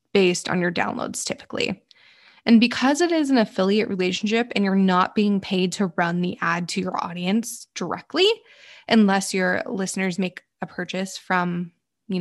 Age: 20-39